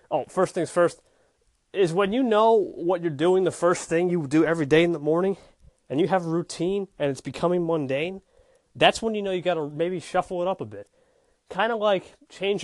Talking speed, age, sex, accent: 225 wpm, 30-49, male, American